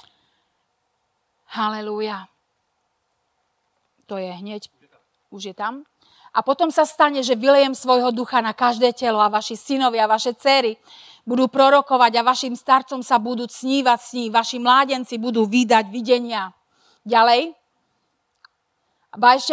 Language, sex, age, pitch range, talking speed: Slovak, female, 30-49, 220-260 Hz, 125 wpm